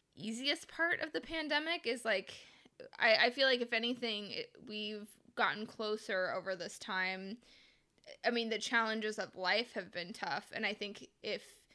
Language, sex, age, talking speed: English, female, 20-39, 165 wpm